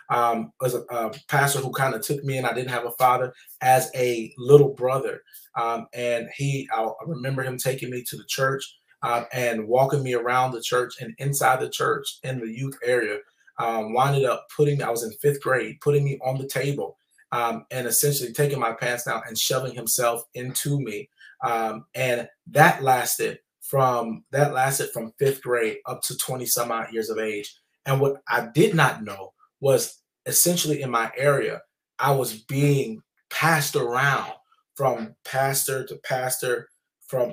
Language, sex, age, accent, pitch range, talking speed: English, male, 20-39, American, 120-140 Hz, 180 wpm